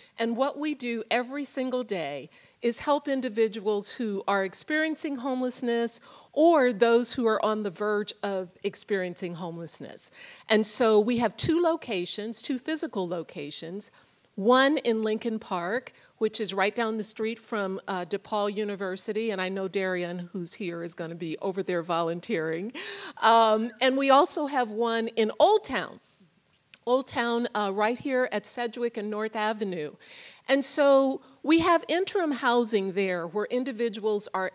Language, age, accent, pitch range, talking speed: English, 50-69, American, 195-255 Hz, 155 wpm